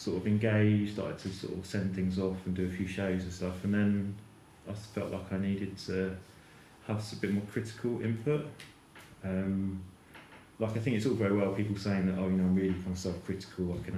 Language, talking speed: English, 230 wpm